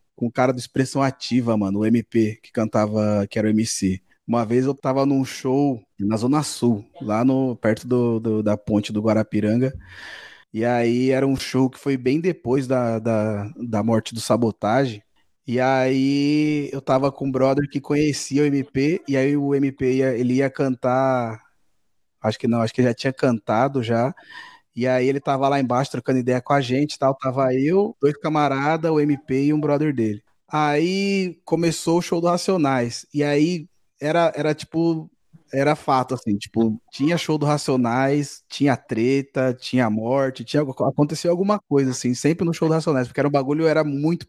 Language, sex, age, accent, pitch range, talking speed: Portuguese, male, 20-39, Brazilian, 120-150 Hz, 185 wpm